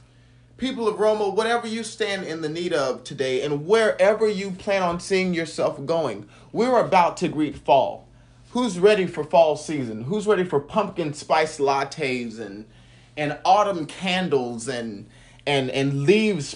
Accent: American